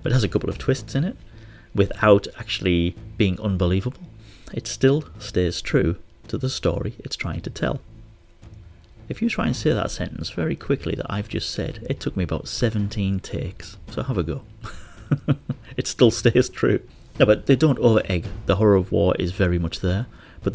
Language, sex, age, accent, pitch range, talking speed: English, male, 30-49, British, 85-110 Hz, 185 wpm